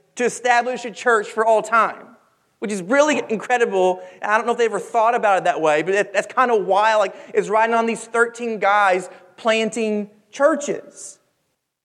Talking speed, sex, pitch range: 180 wpm, male, 210-255 Hz